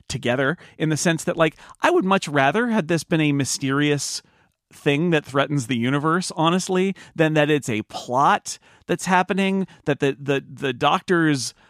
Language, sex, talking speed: English, male, 170 wpm